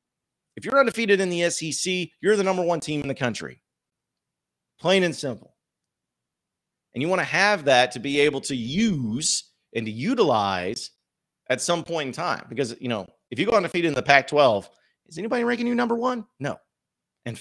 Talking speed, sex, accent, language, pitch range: 185 wpm, male, American, English, 115-170 Hz